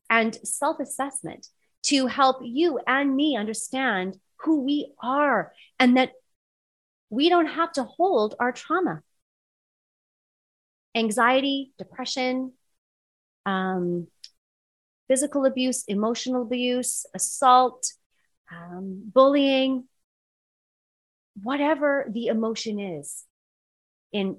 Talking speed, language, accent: 85 wpm, English, American